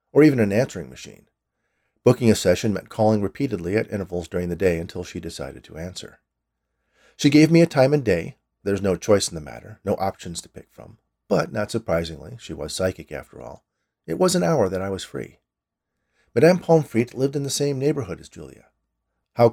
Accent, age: American, 40-59